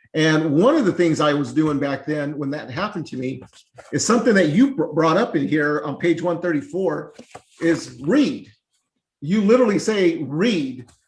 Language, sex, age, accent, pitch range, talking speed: English, male, 40-59, American, 145-185 Hz, 175 wpm